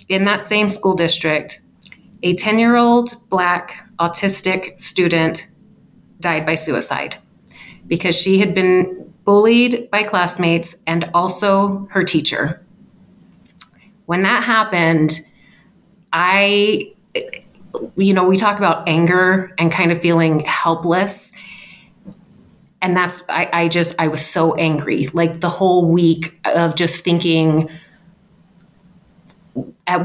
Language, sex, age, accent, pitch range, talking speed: English, female, 30-49, American, 170-195 Hz, 110 wpm